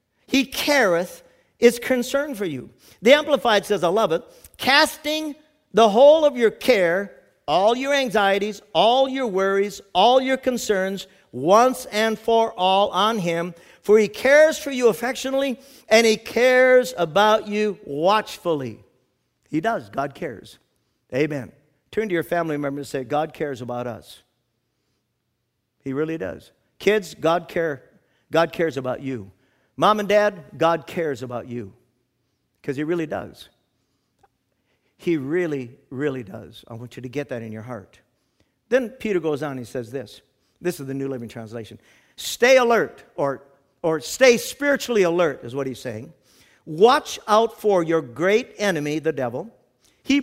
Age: 50-69